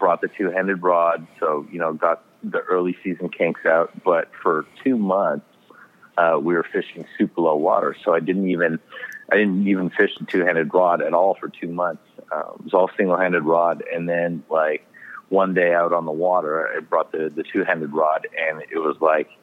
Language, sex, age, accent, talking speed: English, male, 40-59, American, 200 wpm